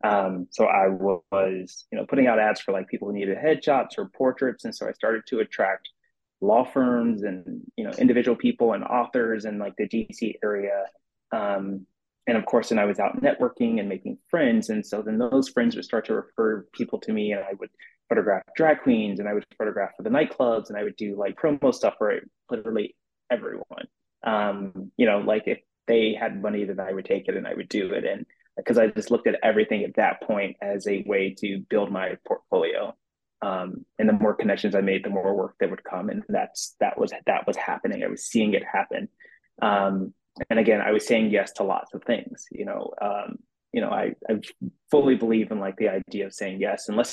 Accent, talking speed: American, 220 wpm